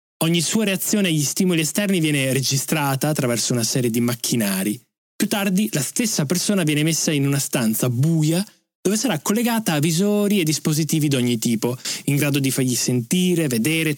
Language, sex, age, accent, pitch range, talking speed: Italian, male, 20-39, native, 130-185 Hz, 170 wpm